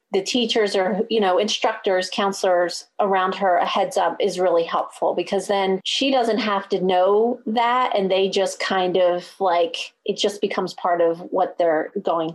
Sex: female